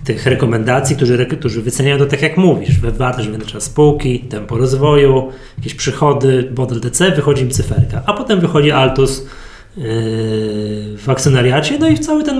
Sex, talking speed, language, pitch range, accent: male, 160 wpm, Polish, 130-150 Hz, native